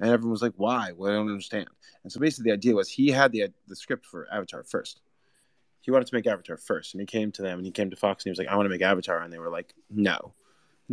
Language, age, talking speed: English, 20-39, 295 wpm